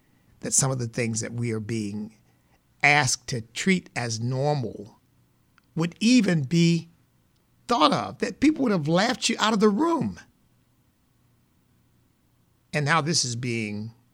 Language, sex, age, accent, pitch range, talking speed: English, male, 50-69, American, 110-140 Hz, 145 wpm